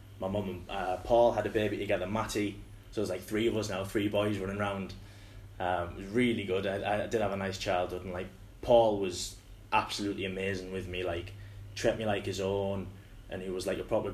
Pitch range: 100-115 Hz